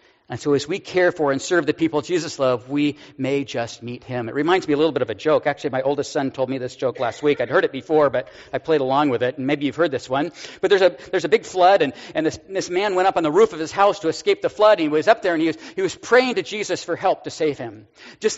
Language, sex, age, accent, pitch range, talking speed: English, male, 50-69, American, 150-245 Hz, 310 wpm